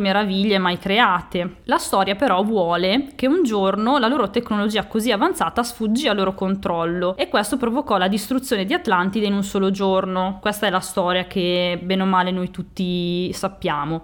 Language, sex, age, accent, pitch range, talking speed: Italian, female, 20-39, native, 190-230 Hz, 175 wpm